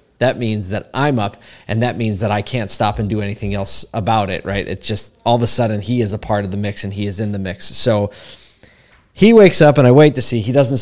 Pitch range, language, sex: 100-130 Hz, English, male